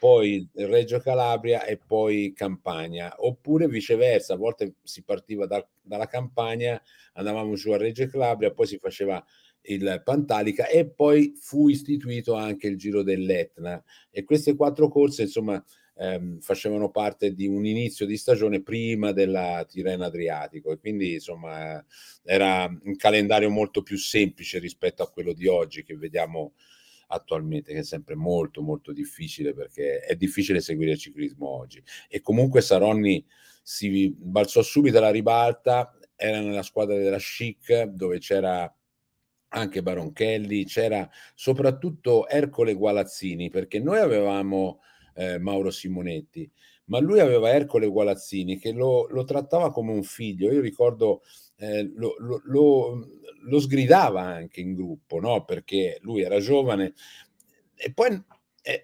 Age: 50-69